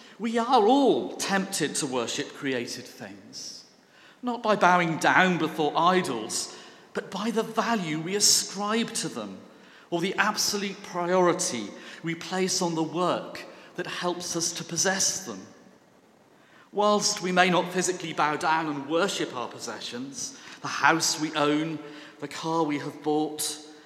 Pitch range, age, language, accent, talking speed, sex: 150-200 Hz, 40-59, English, British, 145 wpm, male